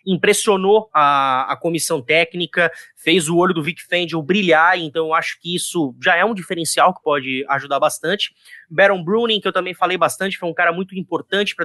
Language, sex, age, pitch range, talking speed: Portuguese, male, 20-39, 160-215 Hz, 195 wpm